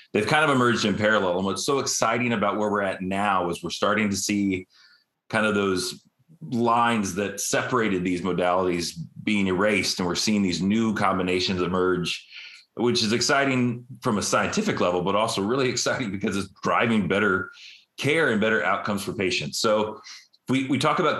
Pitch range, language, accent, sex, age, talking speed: 95-120 Hz, English, American, male, 30-49, 180 wpm